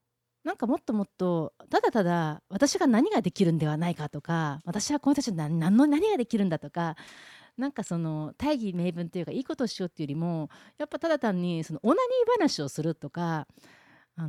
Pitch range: 155-235 Hz